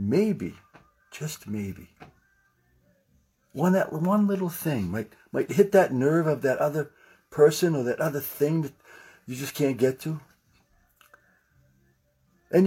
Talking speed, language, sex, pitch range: 135 wpm, English, male, 140-210 Hz